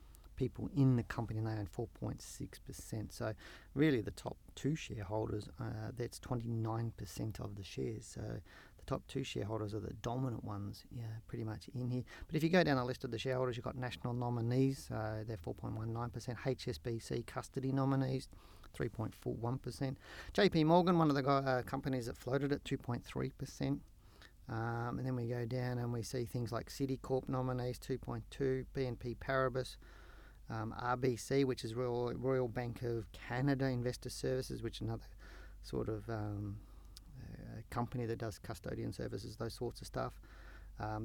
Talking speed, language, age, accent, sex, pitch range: 165 wpm, English, 40-59, Australian, male, 110-130 Hz